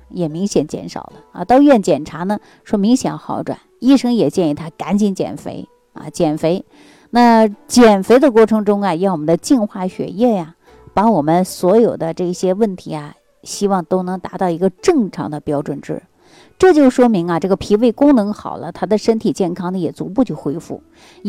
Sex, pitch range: female, 160-225 Hz